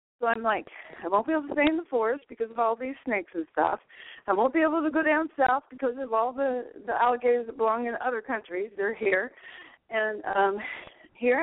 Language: English